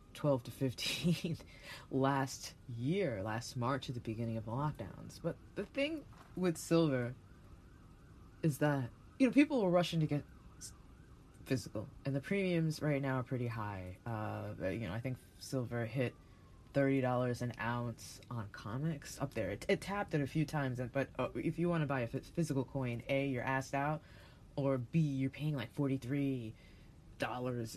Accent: American